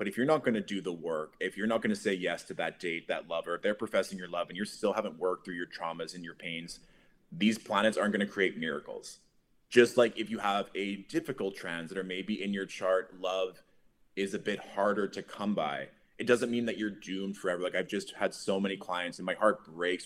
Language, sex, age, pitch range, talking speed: English, male, 20-39, 90-110 Hz, 250 wpm